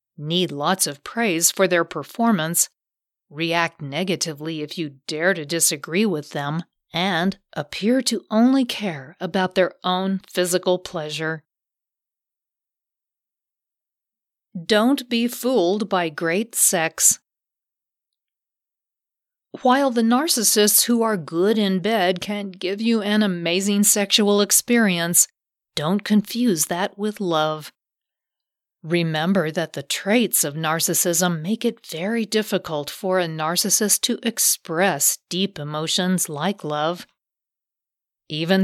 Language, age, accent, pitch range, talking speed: English, 40-59, American, 165-210 Hz, 110 wpm